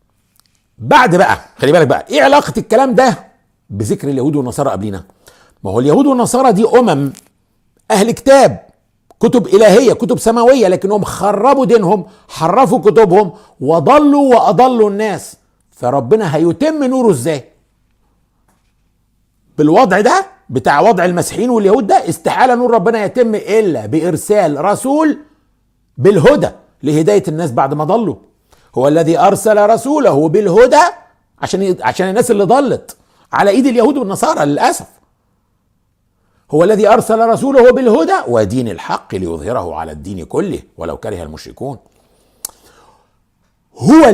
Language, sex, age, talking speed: English, male, 50-69, 120 wpm